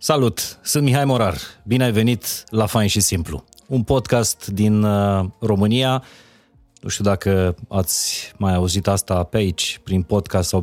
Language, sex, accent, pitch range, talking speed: Romanian, male, native, 90-110 Hz, 150 wpm